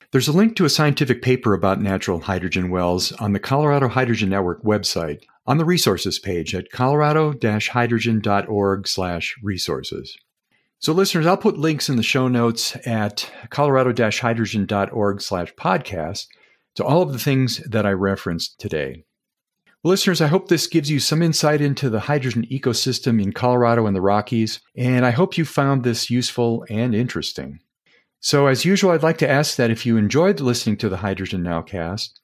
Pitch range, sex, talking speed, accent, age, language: 105-145 Hz, male, 165 wpm, American, 50-69, English